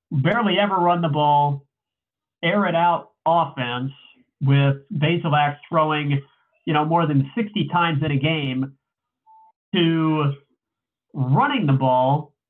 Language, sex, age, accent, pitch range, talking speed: English, male, 40-59, American, 140-180 Hz, 120 wpm